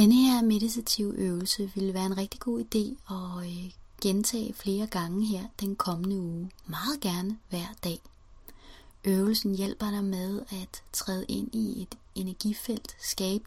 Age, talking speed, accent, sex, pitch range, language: 30-49, 145 wpm, native, female, 180-225 Hz, Danish